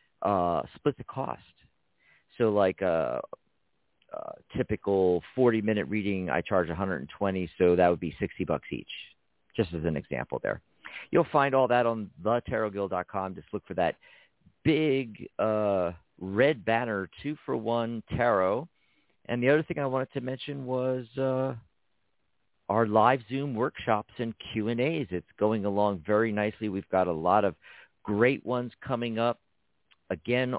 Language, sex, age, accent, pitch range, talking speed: English, male, 50-69, American, 95-120 Hz, 170 wpm